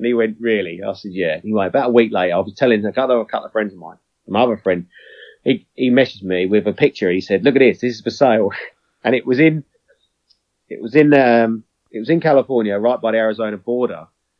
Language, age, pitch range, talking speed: English, 30-49, 110-140 Hz, 240 wpm